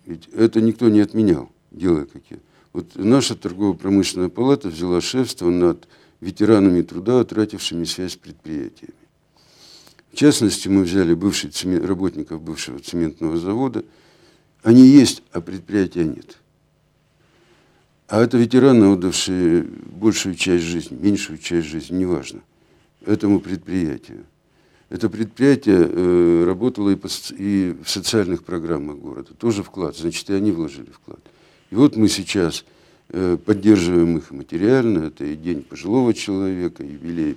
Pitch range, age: 85-115 Hz, 60-79